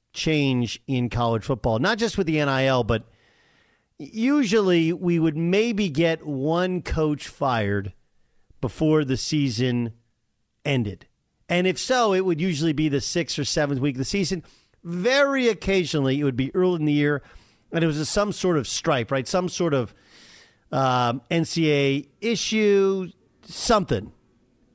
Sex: male